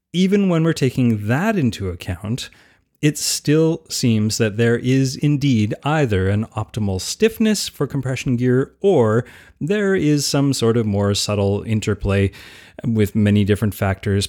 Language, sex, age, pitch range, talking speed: English, male, 30-49, 100-140 Hz, 145 wpm